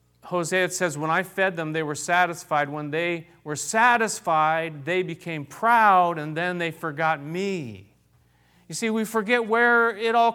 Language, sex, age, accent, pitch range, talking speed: English, male, 40-59, American, 115-185 Hz, 170 wpm